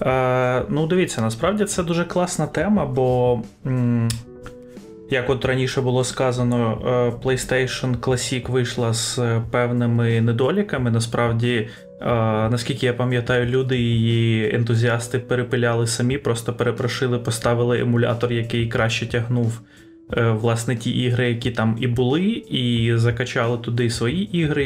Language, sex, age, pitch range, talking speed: Ukrainian, male, 20-39, 115-130 Hz, 115 wpm